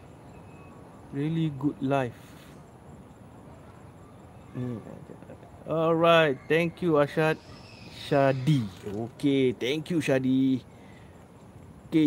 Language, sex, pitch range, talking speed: Malay, male, 120-150 Hz, 70 wpm